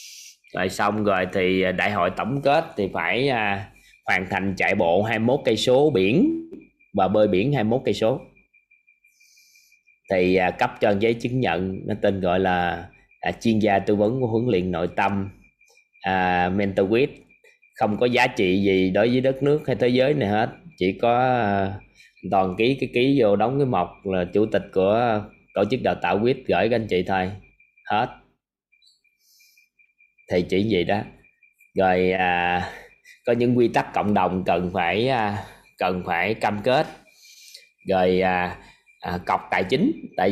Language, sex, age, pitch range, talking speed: Vietnamese, male, 20-39, 95-130 Hz, 170 wpm